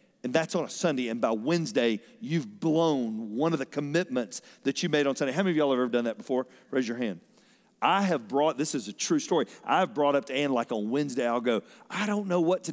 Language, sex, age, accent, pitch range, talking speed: English, male, 40-59, American, 135-220 Hz, 255 wpm